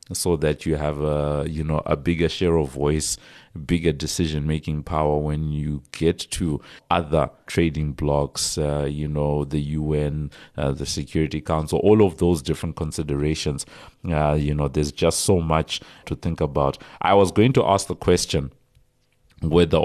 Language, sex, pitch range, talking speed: English, male, 75-90 Hz, 165 wpm